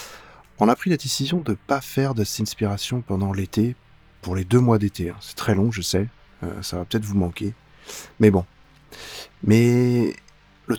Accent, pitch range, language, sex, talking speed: French, 95-110 Hz, French, male, 190 wpm